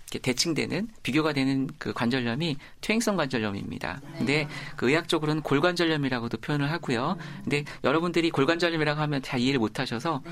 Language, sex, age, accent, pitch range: Korean, male, 40-59, native, 125-165 Hz